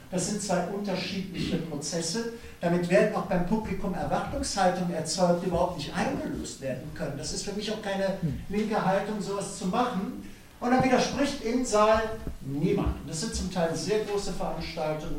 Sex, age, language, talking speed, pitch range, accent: male, 60-79, German, 165 wpm, 165-225 Hz, German